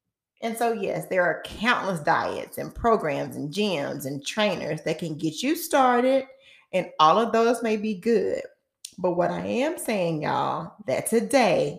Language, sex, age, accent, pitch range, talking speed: English, female, 30-49, American, 160-230 Hz, 170 wpm